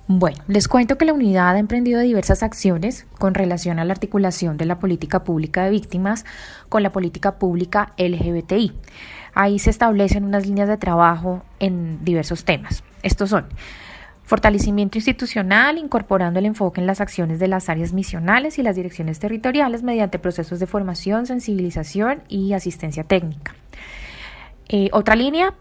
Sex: female